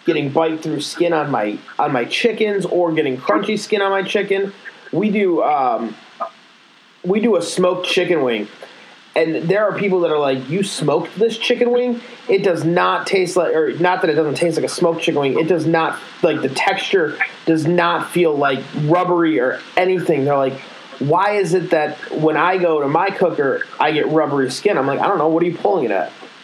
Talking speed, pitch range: 210 wpm, 155-195 Hz